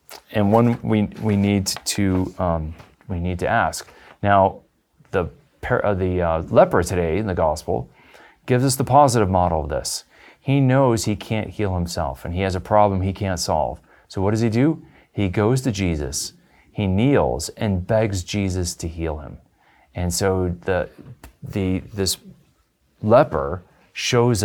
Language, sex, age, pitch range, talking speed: English, male, 30-49, 90-115 Hz, 160 wpm